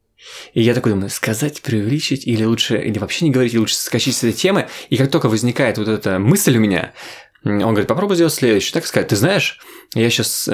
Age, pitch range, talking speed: 20-39, 100-130 Hz, 215 wpm